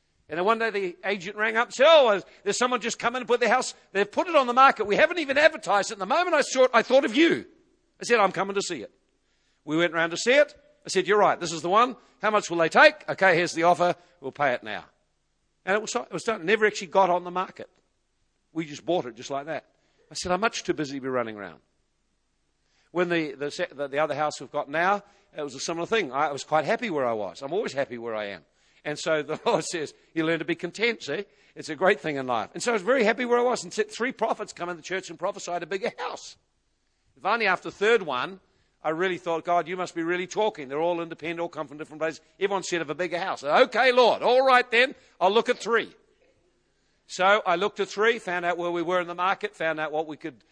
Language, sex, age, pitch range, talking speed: English, male, 50-69, 165-230 Hz, 270 wpm